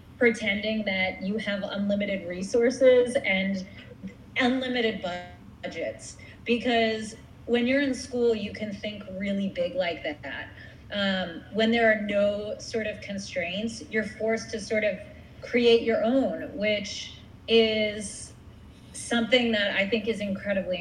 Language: English